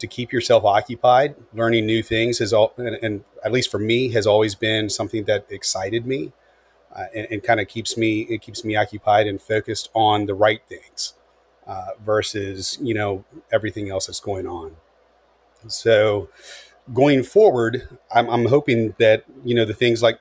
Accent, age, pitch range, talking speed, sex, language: American, 30-49, 105-120 Hz, 180 wpm, male, English